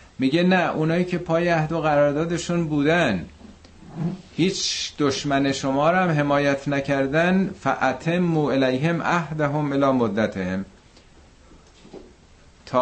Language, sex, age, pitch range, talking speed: Persian, male, 50-69, 105-140 Hz, 115 wpm